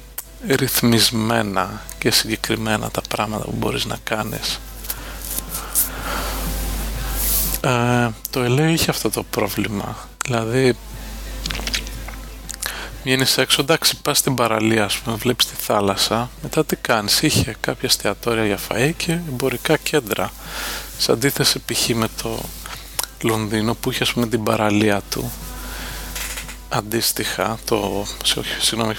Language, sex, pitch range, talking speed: English, male, 105-125 Hz, 110 wpm